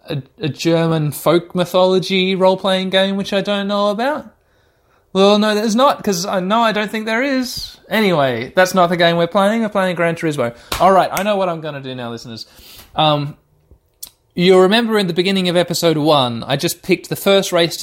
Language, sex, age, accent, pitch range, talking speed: English, male, 20-39, Australian, 130-180 Hz, 200 wpm